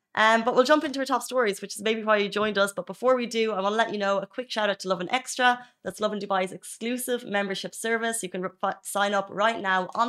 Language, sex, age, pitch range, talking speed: Arabic, female, 30-49, 185-230 Hz, 285 wpm